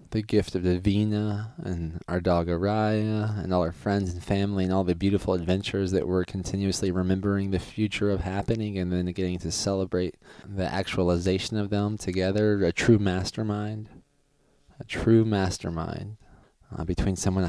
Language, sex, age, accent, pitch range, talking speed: English, male, 20-39, American, 90-110 Hz, 160 wpm